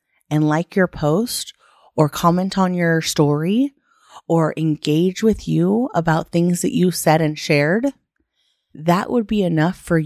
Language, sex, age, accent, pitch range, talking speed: English, female, 30-49, American, 145-180 Hz, 150 wpm